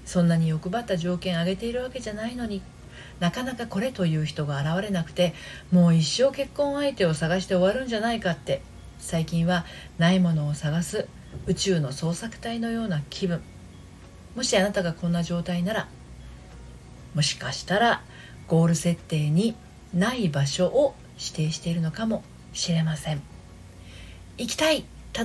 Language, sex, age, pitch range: Japanese, female, 40-59, 150-215 Hz